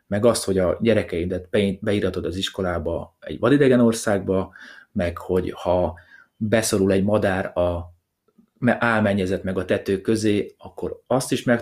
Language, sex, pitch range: Hungarian, male, 95-120 Hz